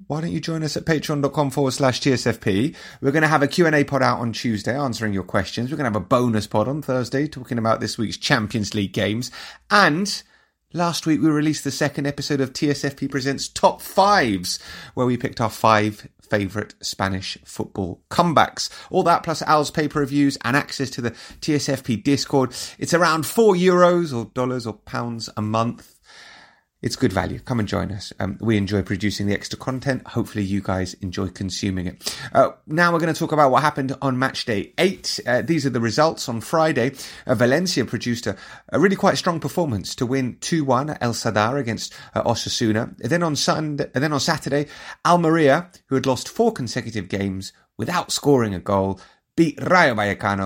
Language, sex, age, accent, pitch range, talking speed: English, male, 30-49, British, 105-150 Hz, 195 wpm